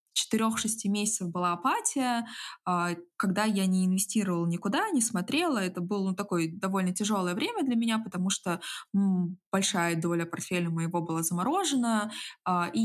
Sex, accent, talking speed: female, native, 135 wpm